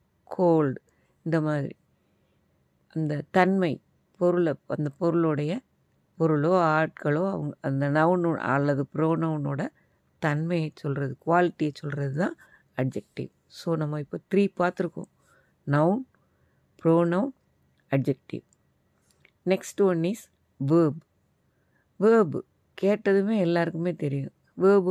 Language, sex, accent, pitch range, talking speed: Tamil, female, native, 150-185 Hz, 95 wpm